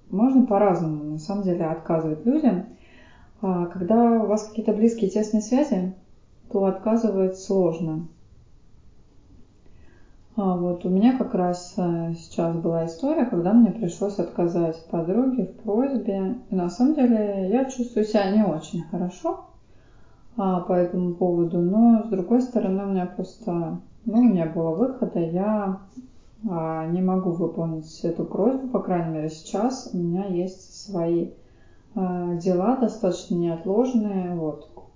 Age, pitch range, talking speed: 20-39, 175-215 Hz, 135 wpm